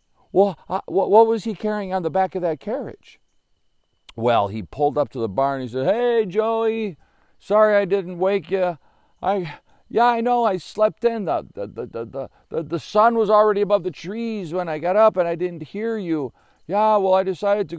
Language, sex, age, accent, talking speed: English, male, 50-69, American, 190 wpm